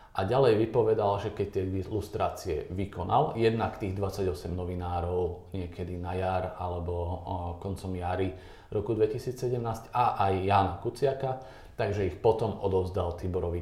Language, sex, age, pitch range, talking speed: Slovak, male, 40-59, 95-115 Hz, 130 wpm